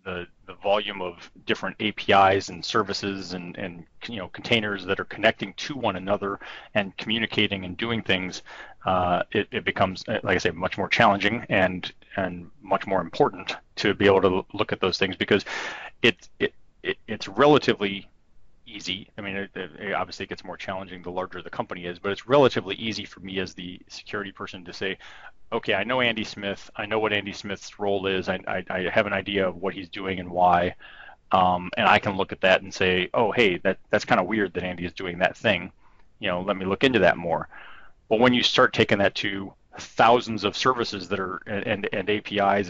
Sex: male